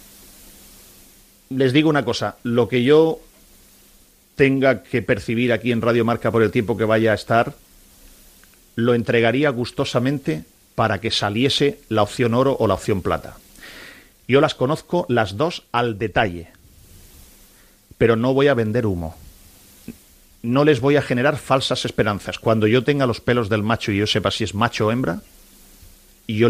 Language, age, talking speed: Spanish, 40-59, 160 wpm